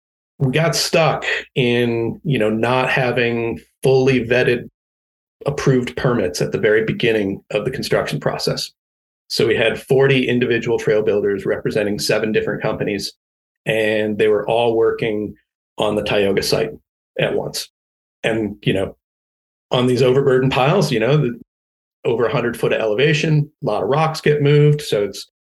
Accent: American